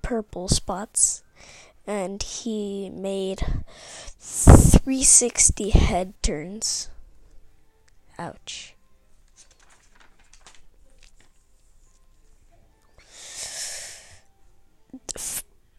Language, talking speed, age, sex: English, 40 wpm, 20-39, female